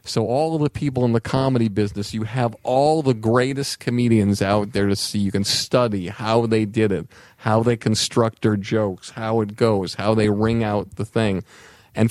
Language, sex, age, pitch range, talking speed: English, male, 50-69, 105-130 Hz, 205 wpm